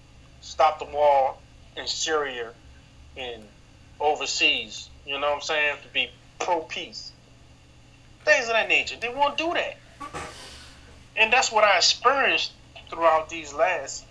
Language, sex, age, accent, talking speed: English, male, 30-49, American, 130 wpm